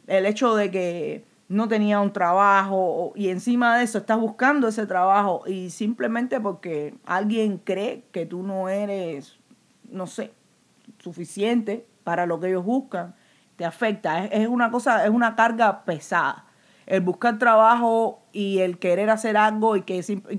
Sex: female